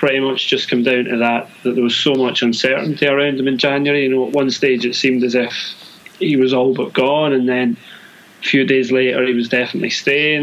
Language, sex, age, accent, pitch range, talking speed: English, male, 20-39, British, 120-135 Hz, 235 wpm